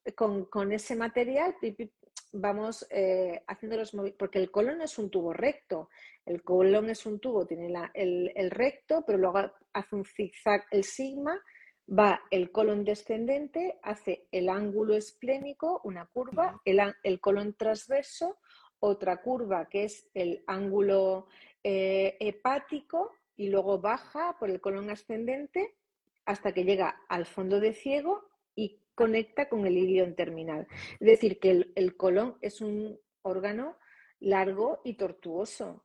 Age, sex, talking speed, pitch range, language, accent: 40-59, female, 145 wpm, 190-230 Hz, Spanish, Spanish